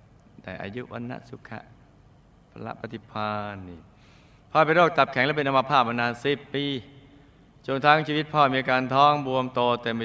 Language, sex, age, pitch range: Thai, male, 20-39, 100-130 Hz